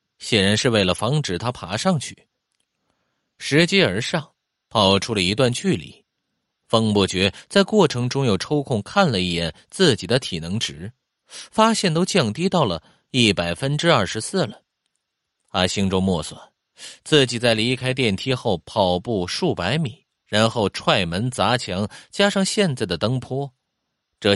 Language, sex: Chinese, male